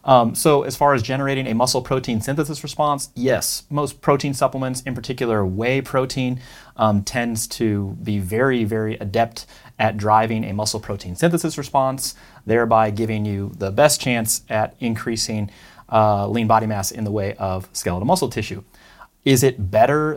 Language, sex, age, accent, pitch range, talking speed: English, male, 30-49, American, 105-125 Hz, 165 wpm